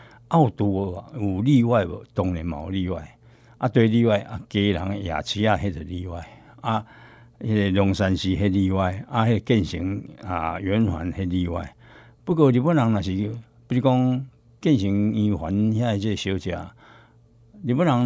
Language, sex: Chinese, male